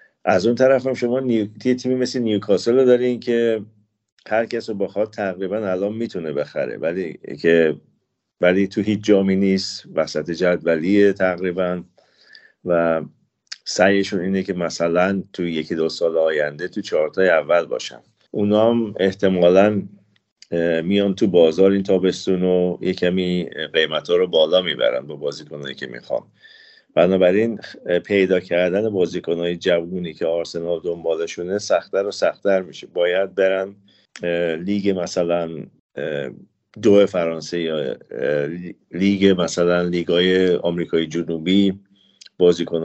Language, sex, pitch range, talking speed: Persian, male, 85-105 Hz, 125 wpm